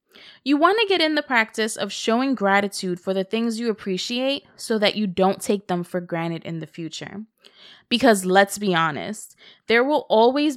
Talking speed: 185 wpm